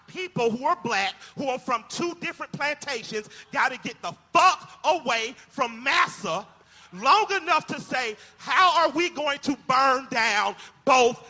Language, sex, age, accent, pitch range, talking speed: English, male, 40-59, American, 245-340 Hz, 160 wpm